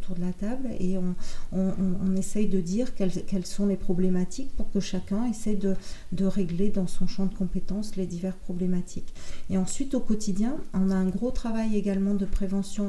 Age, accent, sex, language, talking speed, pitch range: 40-59, French, female, French, 200 wpm, 185-205 Hz